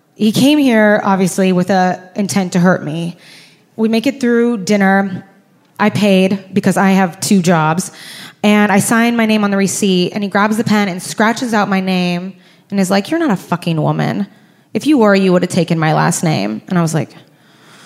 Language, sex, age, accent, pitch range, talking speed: English, female, 20-39, American, 180-220 Hz, 210 wpm